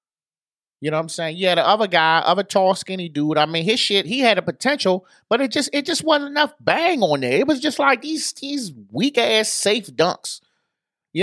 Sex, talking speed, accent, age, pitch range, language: male, 225 wpm, American, 30-49, 155-245 Hz, English